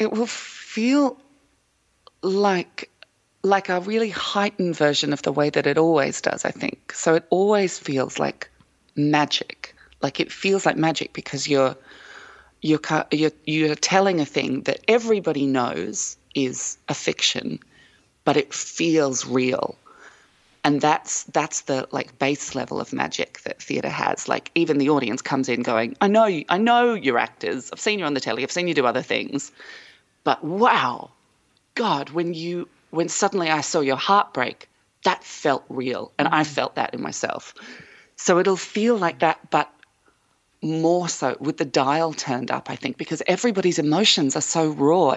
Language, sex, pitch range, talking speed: English, female, 150-195 Hz, 165 wpm